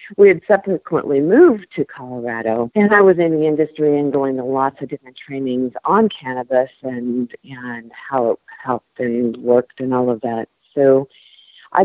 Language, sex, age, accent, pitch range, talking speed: English, female, 50-69, American, 130-175 Hz, 170 wpm